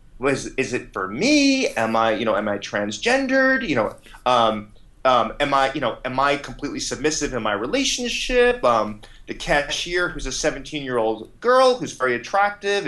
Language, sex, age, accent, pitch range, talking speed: English, male, 30-49, American, 125-190 Hz, 180 wpm